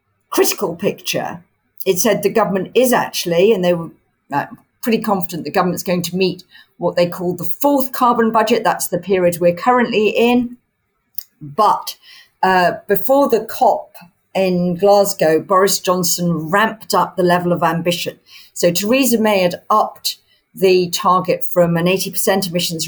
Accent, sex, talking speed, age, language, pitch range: British, female, 150 wpm, 50-69, English, 170-205 Hz